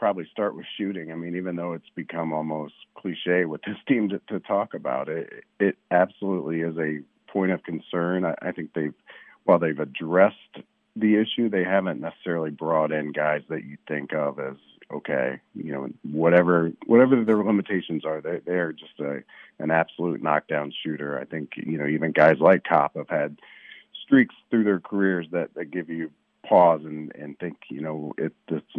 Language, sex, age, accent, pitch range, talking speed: English, male, 40-59, American, 75-90 Hz, 185 wpm